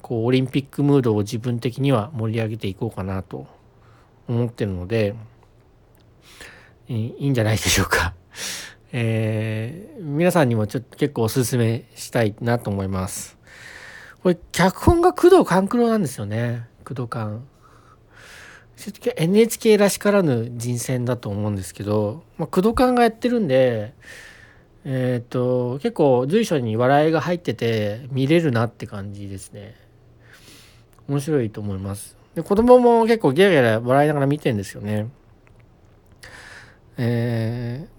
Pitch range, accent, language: 110-165 Hz, native, Japanese